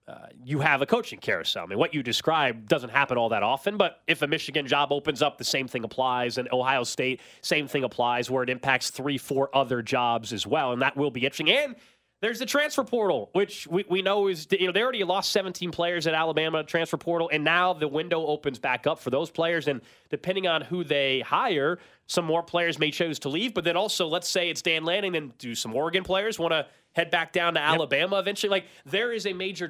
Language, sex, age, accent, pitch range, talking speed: English, male, 30-49, American, 135-175 Hz, 235 wpm